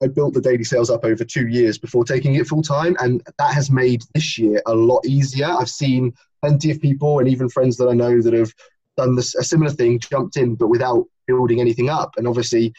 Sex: male